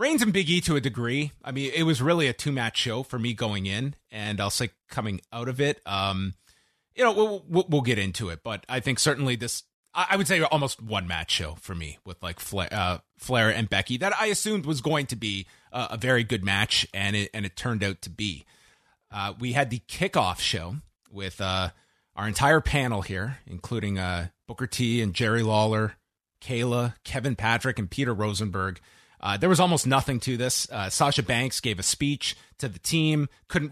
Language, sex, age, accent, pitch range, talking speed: English, male, 30-49, American, 100-145 Hz, 210 wpm